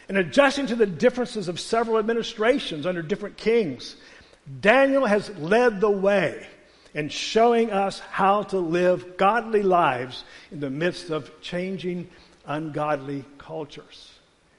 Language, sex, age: English, male, 50-69